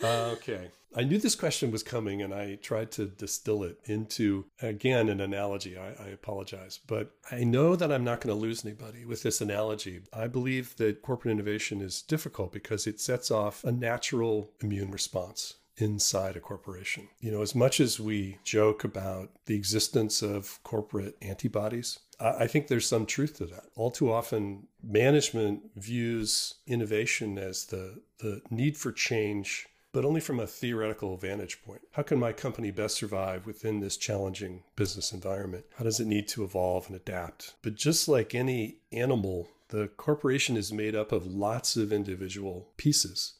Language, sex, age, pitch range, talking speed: English, male, 40-59, 100-120 Hz, 175 wpm